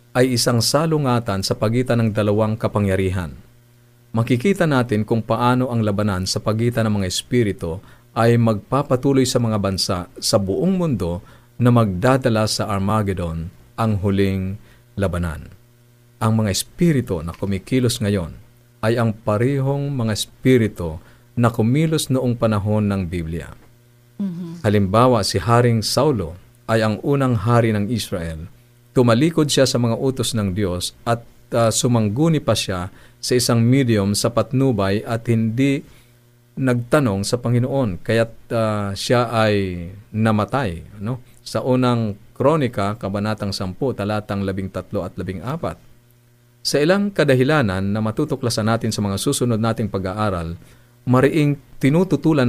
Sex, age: male, 50-69